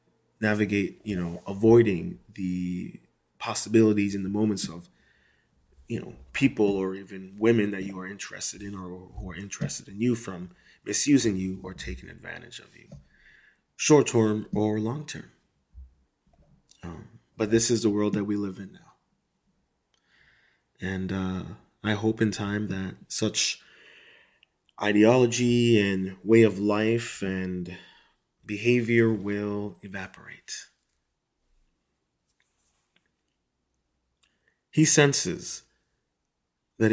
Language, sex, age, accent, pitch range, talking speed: English, male, 30-49, American, 95-115 Hz, 110 wpm